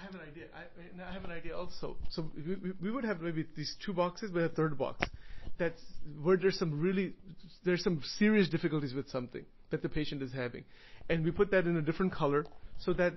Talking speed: 220 wpm